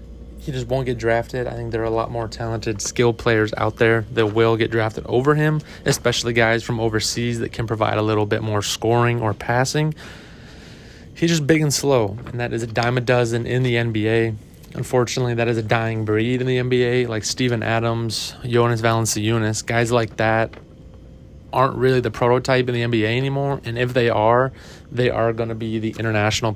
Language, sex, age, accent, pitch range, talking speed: English, male, 30-49, American, 110-125 Hz, 200 wpm